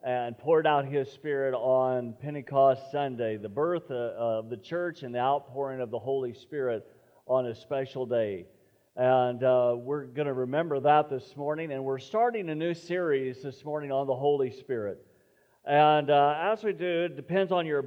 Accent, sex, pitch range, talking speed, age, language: American, male, 140-165 Hz, 180 wpm, 50-69, English